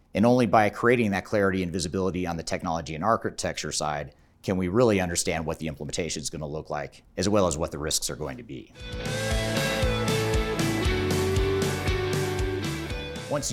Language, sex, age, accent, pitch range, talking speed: English, male, 30-49, American, 90-110 Hz, 165 wpm